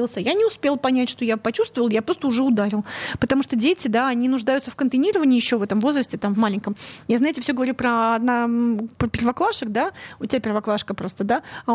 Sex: female